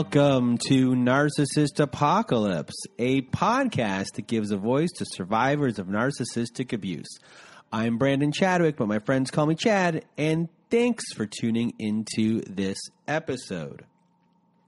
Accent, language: American, English